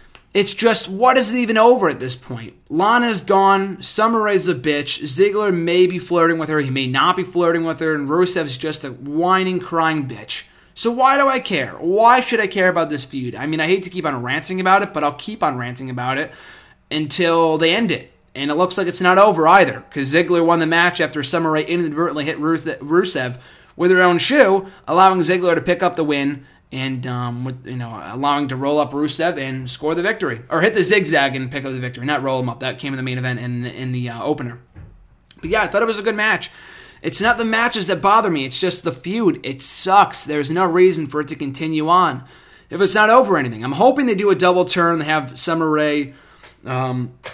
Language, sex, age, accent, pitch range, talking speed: English, male, 20-39, American, 140-185 Hz, 235 wpm